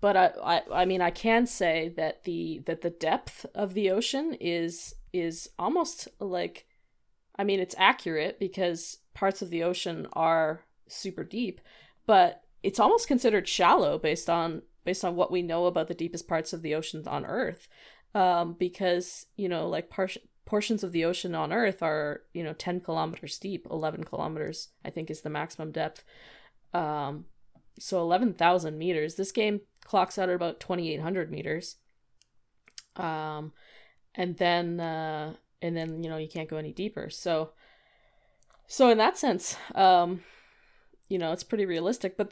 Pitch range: 165-195 Hz